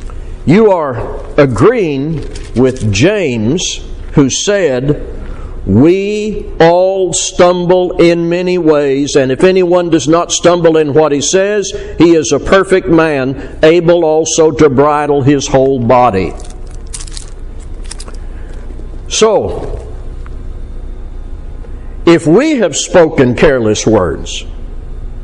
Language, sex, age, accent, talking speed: English, male, 60-79, American, 100 wpm